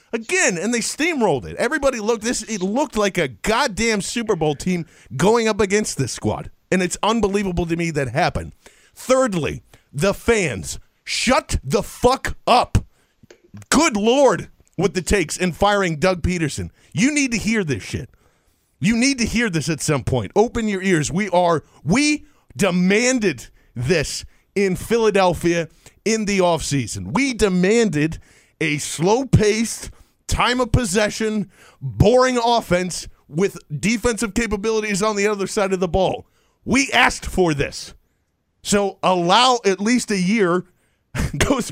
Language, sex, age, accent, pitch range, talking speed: English, male, 40-59, American, 180-240 Hz, 145 wpm